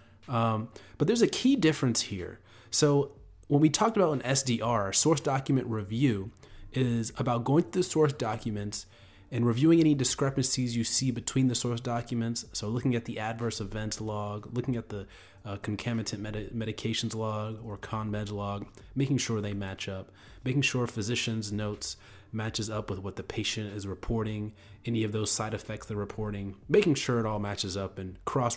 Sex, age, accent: male, 30-49, American